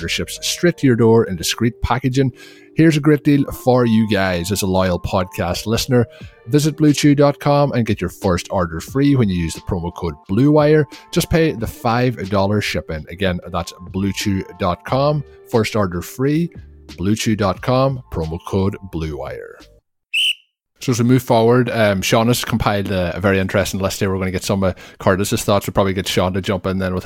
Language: English